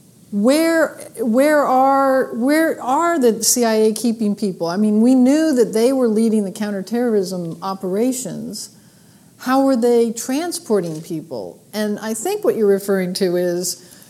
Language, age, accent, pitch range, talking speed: English, 50-69, American, 195-250 Hz, 140 wpm